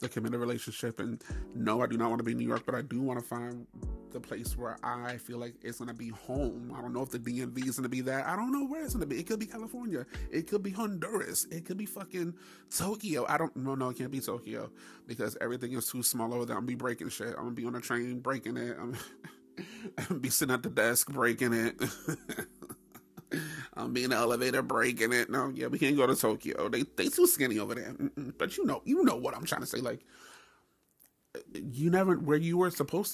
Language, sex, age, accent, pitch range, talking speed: English, male, 30-49, American, 120-145 Hz, 245 wpm